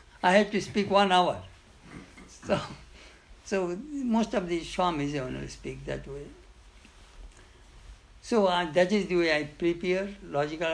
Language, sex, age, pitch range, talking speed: English, male, 60-79, 135-195 Hz, 140 wpm